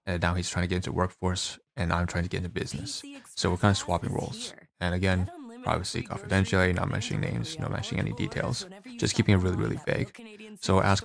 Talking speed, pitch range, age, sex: 215 wpm, 85-105 Hz, 20-39, male